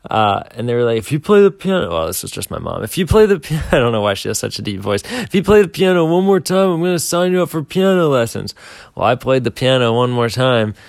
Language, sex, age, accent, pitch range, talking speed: English, male, 20-39, American, 115-140 Hz, 310 wpm